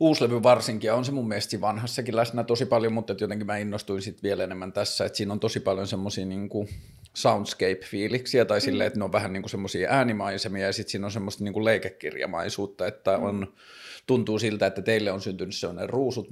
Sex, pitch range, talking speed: male, 100-115 Hz, 190 wpm